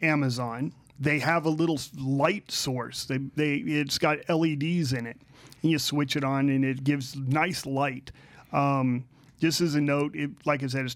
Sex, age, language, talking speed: male, 40-59, English, 185 wpm